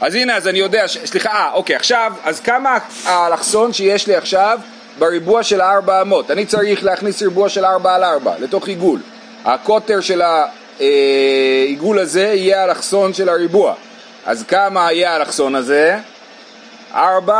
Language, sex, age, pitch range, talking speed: Hebrew, male, 30-49, 130-205 Hz, 155 wpm